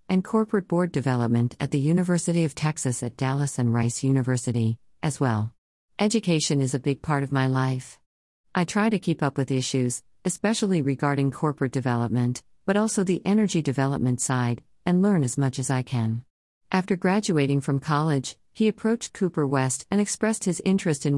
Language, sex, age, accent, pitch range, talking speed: English, female, 50-69, American, 130-175 Hz, 175 wpm